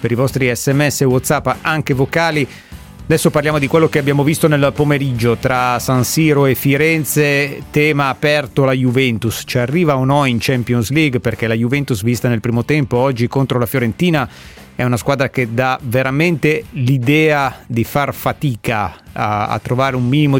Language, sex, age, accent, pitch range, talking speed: Italian, male, 30-49, native, 120-145 Hz, 175 wpm